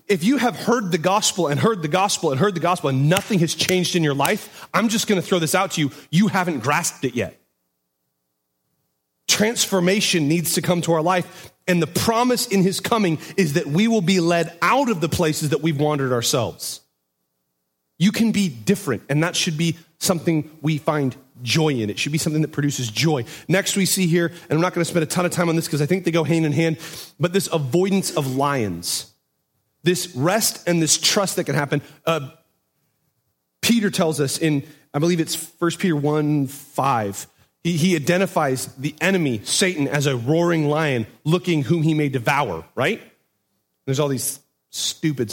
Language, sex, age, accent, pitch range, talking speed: English, male, 30-49, American, 135-180 Hz, 200 wpm